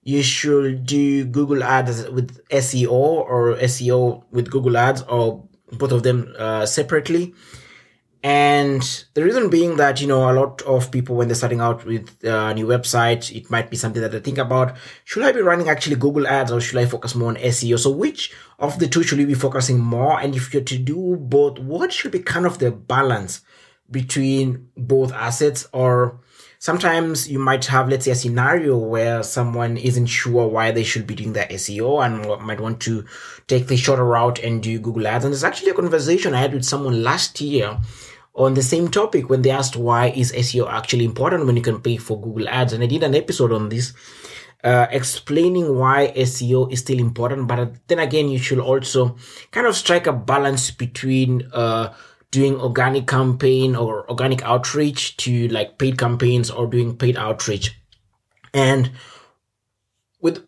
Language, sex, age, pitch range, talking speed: English, male, 20-39, 120-135 Hz, 190 wpm